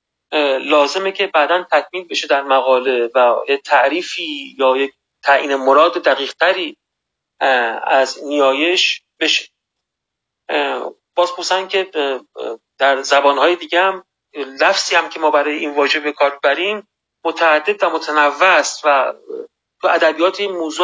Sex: male